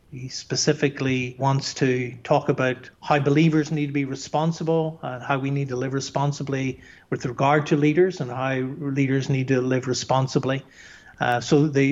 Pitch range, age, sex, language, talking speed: 130-160 Hz, 50-69, male, English, 165 wpm